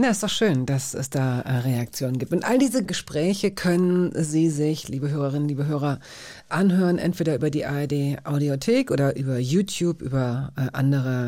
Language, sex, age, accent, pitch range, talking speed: German, female, 50-69, German, 145-185 Hz, 165 wpm